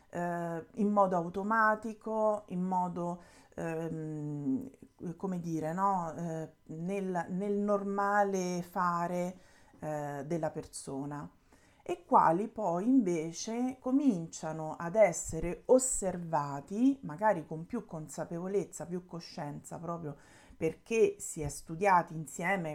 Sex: female